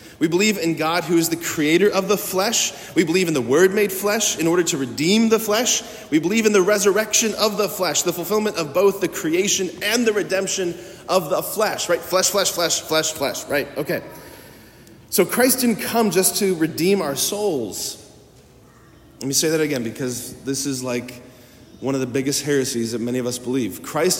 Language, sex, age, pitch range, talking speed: English, male, 30-49, 155-210 Hz, 200 wpm